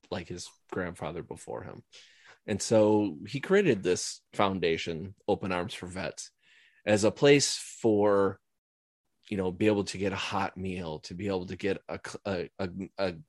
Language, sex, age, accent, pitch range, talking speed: English, male, 30-49, American, 95-110 Hz, 165 wpm